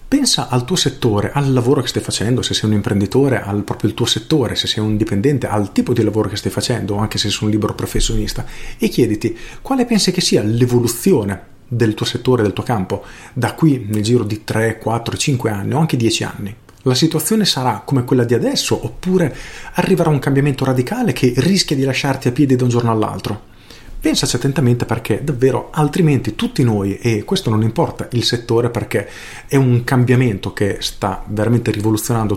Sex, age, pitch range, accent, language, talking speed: male, 40-59, 110-135 Hz, native, Italian, 195 wpm